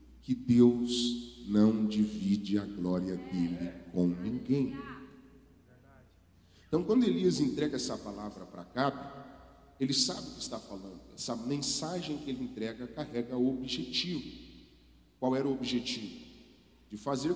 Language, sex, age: Portuguese, male, 40-59